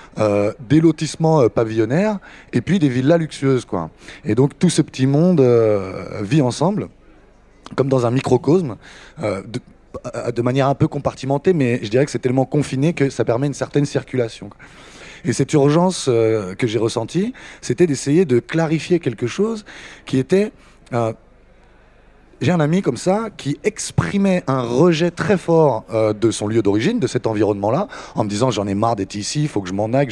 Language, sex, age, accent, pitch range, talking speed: French, male, 20-39, French, 125-170 Hz, 190 wpm